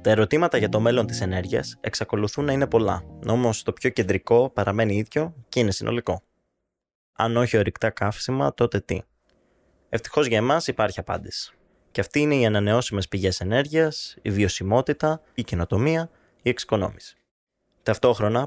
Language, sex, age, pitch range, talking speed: Greek, male, 20-39, 95-125 Hz, 145 wpm